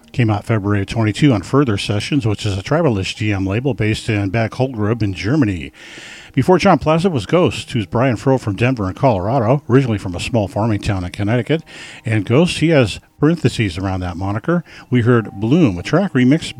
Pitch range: 105-135 Hz